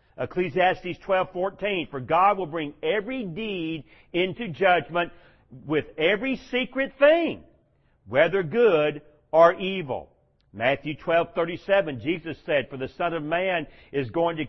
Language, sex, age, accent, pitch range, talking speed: English, male, 50-69, American, 150-190 Hz, 125 wpm